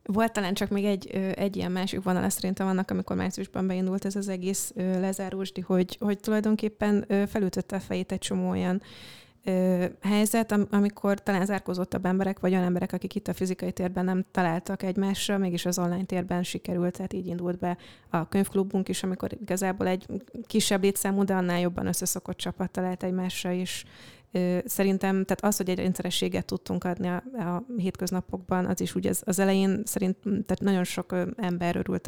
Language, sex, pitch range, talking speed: Hungarian, female, 175-195 Hz, 170 wpm